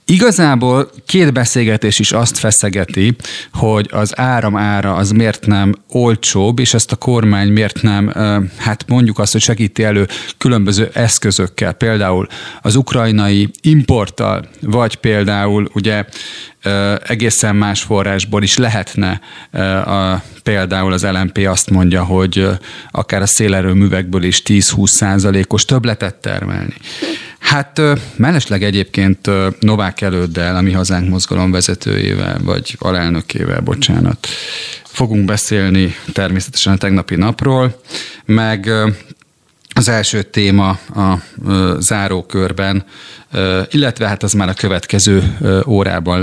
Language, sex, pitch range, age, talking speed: Hungarian, male, 95-115 Hz, 30-49, 115 wpm